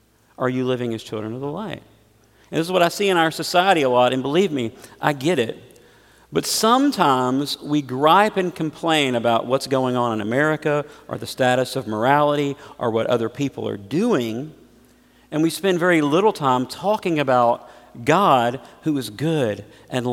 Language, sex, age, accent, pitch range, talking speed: English, male, 50-69, American, 110-150 Hz, 180 wpm